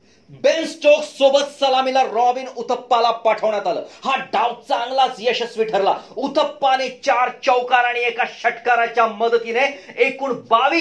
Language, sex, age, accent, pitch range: Marathi, male, 40-59, native, 225-265 Hz